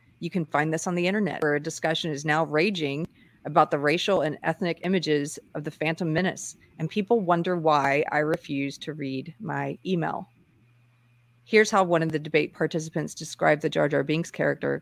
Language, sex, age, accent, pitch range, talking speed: English, female, 40-59, American, 145-170 Hz, 185 wpm